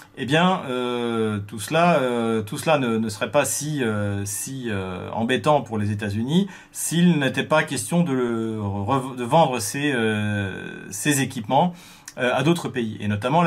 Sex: male